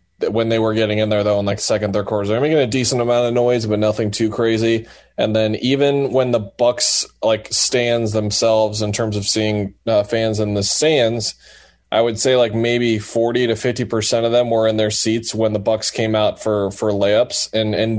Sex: male